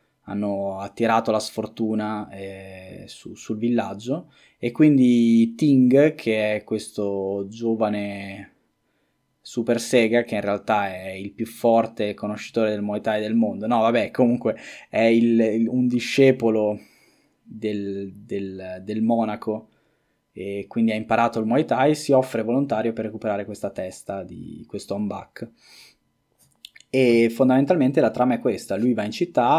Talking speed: 140 wpm